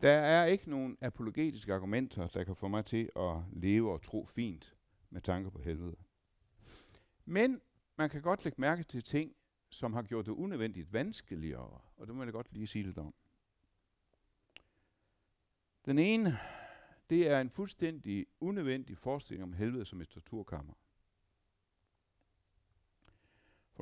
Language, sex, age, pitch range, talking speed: Danish, male, 60-79, 90-115 Hz, 145 wpm